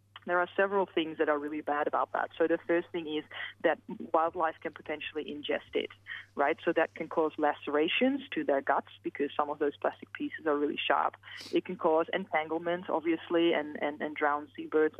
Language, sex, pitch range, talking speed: English, female, 145-175 Hz, 195 wpm